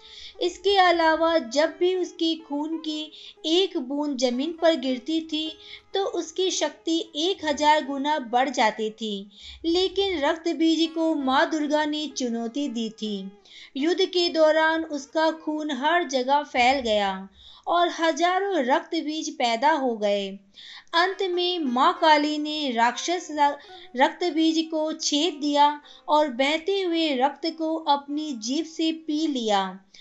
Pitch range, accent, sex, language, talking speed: 275-345 Hz, native, female, Hindi, 140 wpm